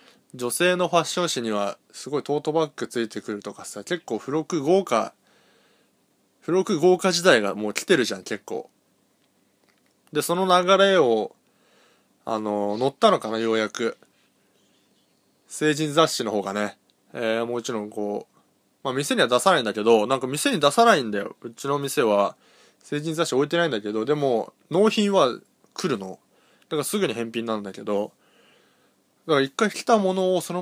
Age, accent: 20-39, native